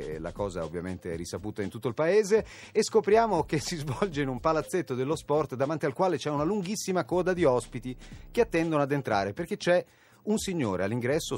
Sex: male